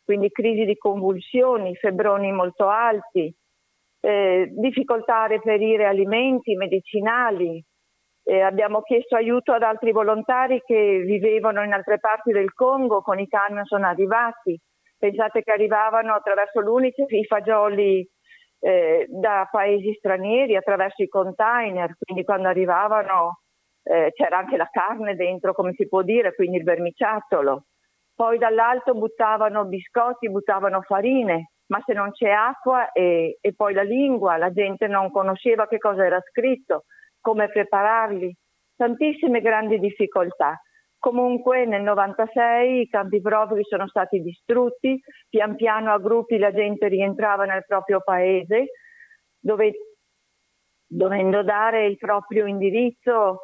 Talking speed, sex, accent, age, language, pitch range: 130 wpm, female, native, 50-69, Italian, 195-230 Hz